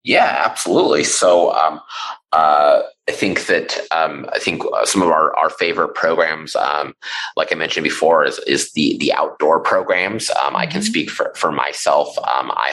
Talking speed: 175 wpm